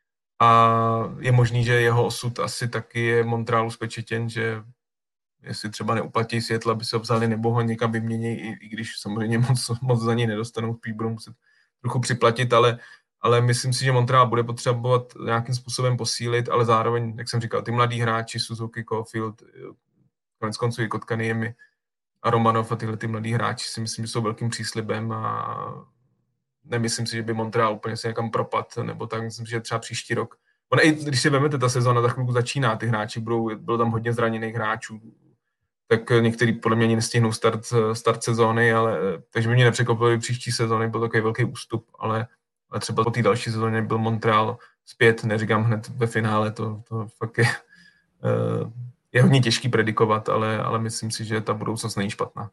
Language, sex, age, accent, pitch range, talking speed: Czech, male, 20-39, native, 110-120 Hz, 185 wpm